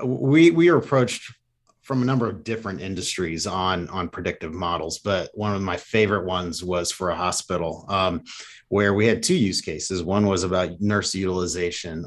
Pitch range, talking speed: 90-110 Hz, 180 wpm